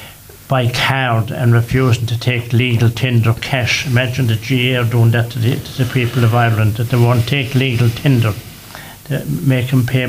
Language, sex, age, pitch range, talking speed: English, male, 60-79, 115-130 Hz, 185 wpm